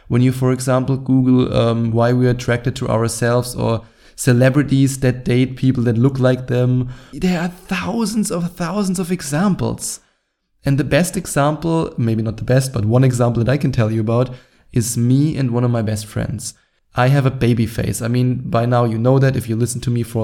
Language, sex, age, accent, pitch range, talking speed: English, male, 20-39, German, 115-135 Hz, 210 wpm